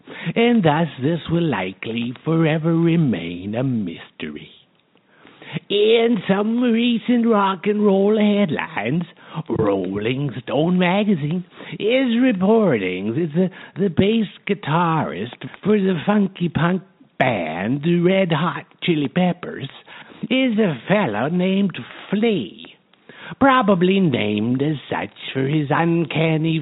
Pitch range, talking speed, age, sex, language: 145-205 Hz, 110 wpm, 60-79, male, English